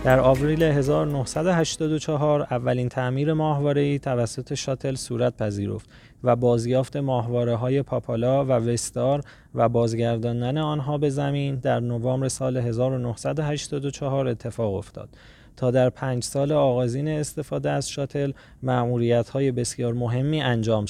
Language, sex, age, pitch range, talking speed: Persian, male, 20-39, 120-145 Hz, 115 wpm